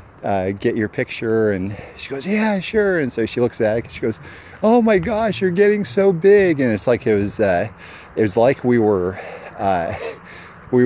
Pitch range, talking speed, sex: 95-120 Hz, 210 wpm, male